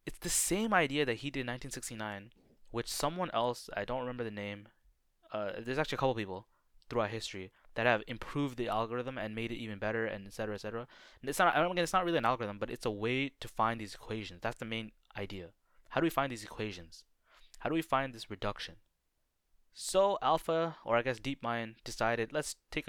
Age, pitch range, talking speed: 20-39, 105-135 Hz, 210 wpm